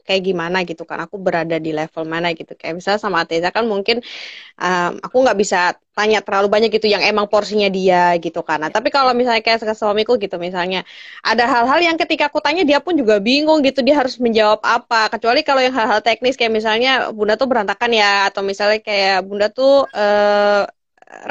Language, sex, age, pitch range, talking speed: Indonesian, female, 20-39, 200-250 Hz, 195 wpm